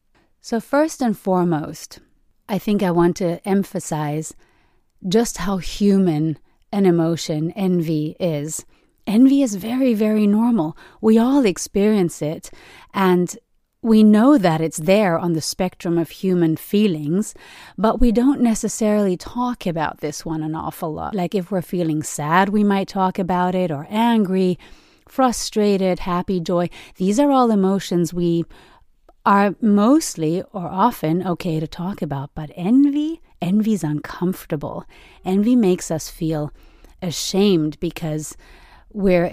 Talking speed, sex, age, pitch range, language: 135 wpm, female, 30-49, 165-210 Hz, English